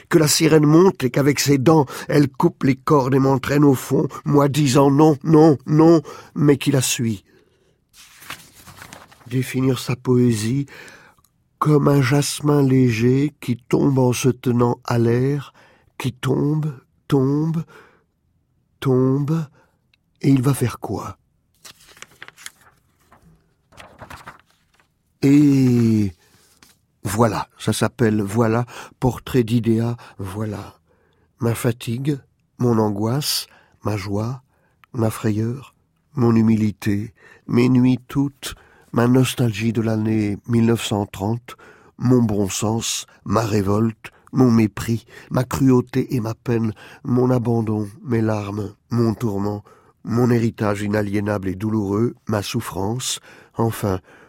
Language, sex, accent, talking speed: French, male, French, 110 wpm